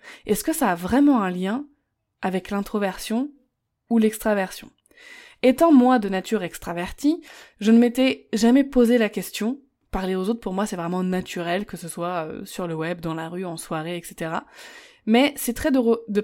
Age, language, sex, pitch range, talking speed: 20-39, French, female, 190-235 Hz, 175 wpm